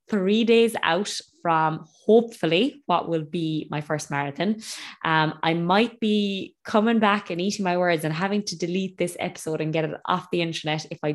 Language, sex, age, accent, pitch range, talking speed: English, female, 20-39, Irish, 155-190 Hz, 190 wpm